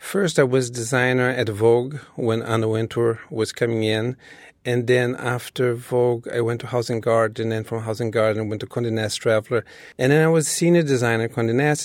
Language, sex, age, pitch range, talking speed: English, male, 40-59, 115-145 Hz, 220 wpm